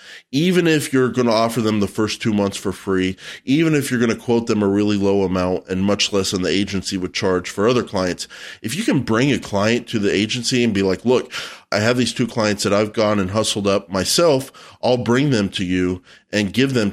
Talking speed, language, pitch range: 240 wpm, English, 95-120 Hz